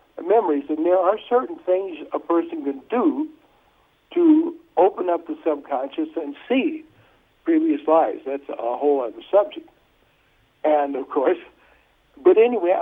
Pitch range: 145-210 Hz